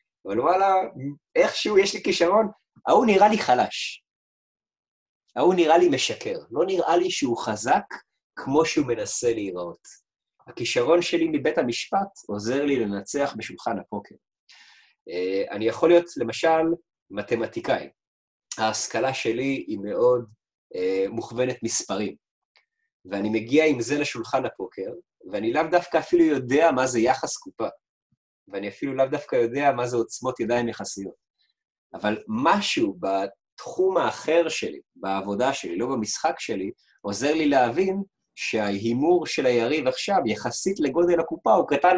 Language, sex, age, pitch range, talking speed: Hebrew, male, 30-49, 120-185 Hz, 130 wpm